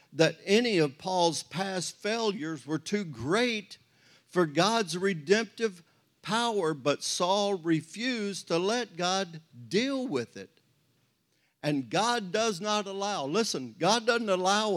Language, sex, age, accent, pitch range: Japanese, male, 50-69, American, 145-195 Hz